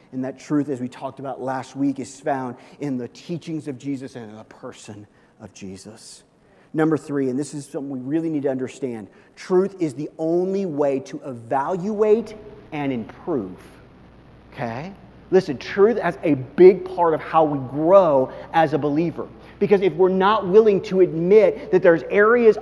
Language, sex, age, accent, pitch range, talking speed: English, male, 30-49, American, 165-220 Hz, 175 wpm